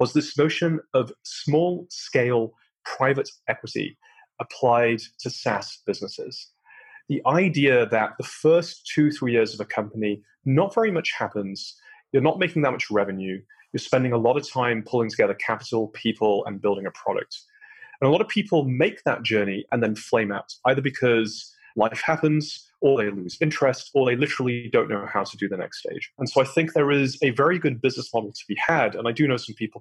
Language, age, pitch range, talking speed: English, 30-49, 110-160 Hz, 195 wpm